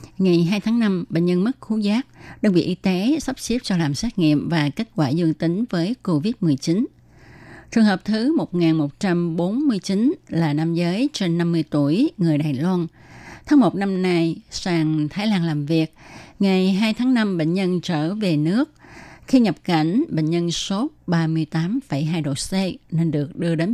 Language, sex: Vietnamese, female